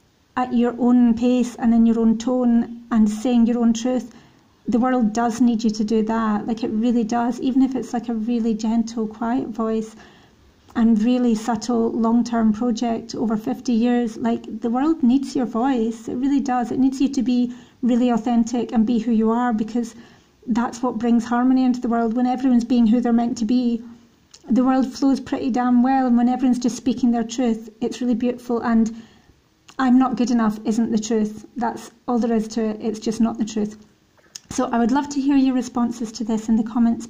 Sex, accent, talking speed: female, British, 205 wpm